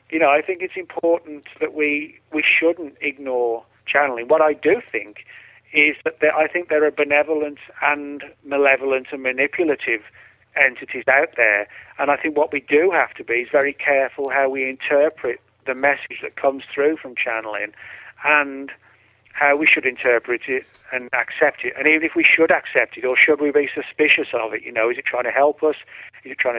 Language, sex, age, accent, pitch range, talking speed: English, male, 40-59, British, 130-150 Hz, 195 wpm